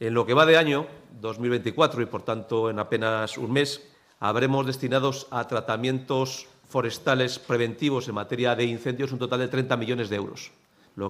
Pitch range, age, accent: 115-135 Hz, 40-59, Spanish